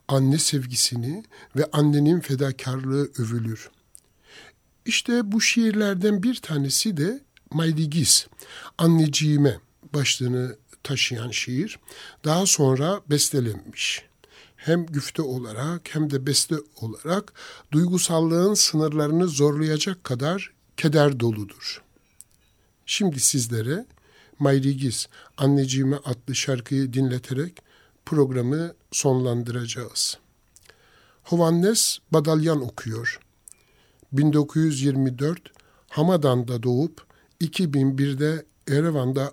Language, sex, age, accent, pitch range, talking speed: Turkish, male, 60-79, native, 125-160 Hz, 75 wpm